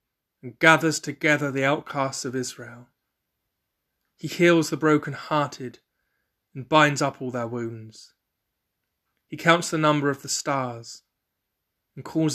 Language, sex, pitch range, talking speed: English, male, 120-150 Hz, 130 wpm